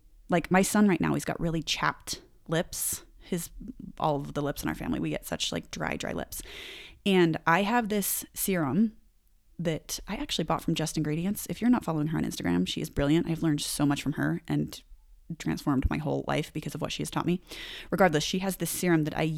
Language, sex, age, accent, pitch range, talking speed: English, female, 30-49, American, 155-195 Hz, 225 wpm